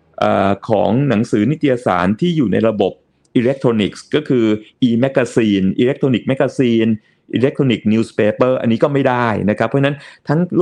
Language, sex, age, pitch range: Thai, male, 30-49, 105-140 Hz